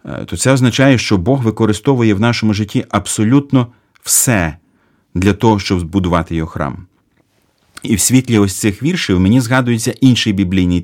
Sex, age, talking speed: male, 40-59, 150 wpm